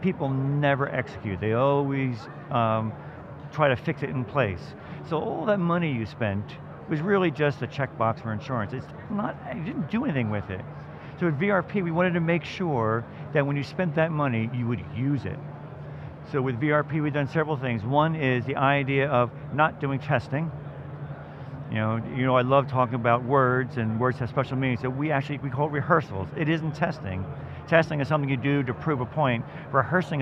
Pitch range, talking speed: 125-155 Hz, 200 wpm